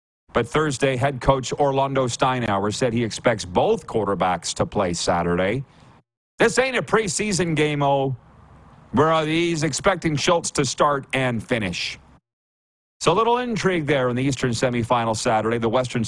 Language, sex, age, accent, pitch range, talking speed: English, male, 40-59, American, 105-150 Hz, 150 wpm